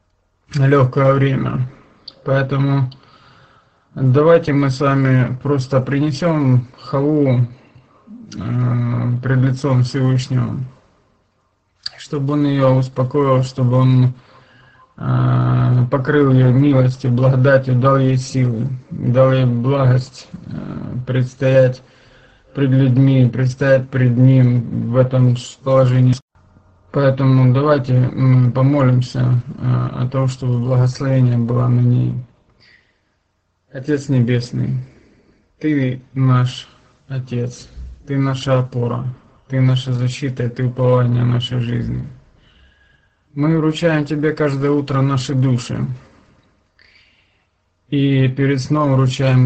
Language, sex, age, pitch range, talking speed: Russian, male, 20-39, 125-135 Hz, 95 wpm